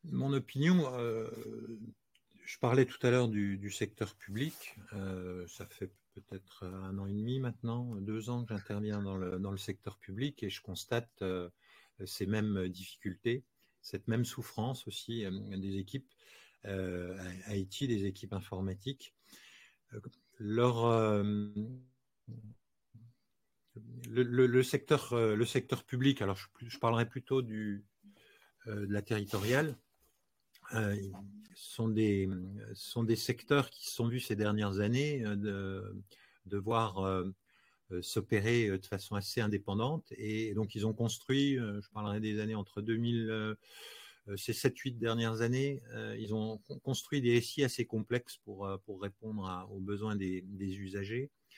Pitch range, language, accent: 100-120 Hz, French, French